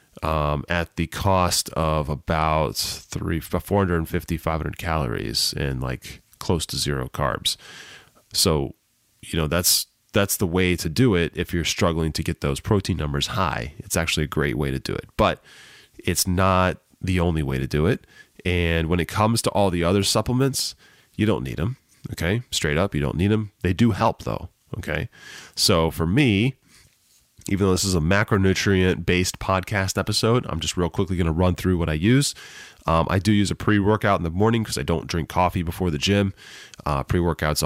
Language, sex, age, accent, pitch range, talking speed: English, male, 30-49, American, 80-100 Hz, 195 wpm